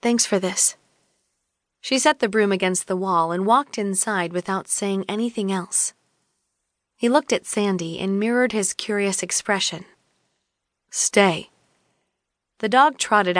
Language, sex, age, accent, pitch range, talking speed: English, female, 20-39, American, 185-235 Hz, 135 wpm